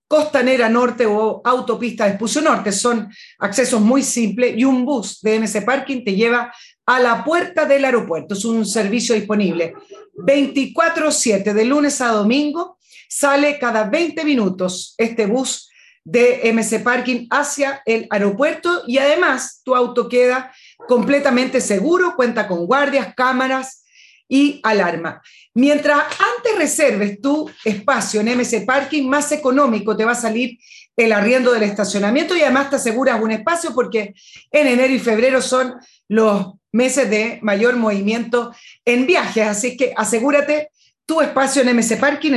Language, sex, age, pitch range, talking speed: Spanish, female, 40-59, 220-275 Hz, 145 wpm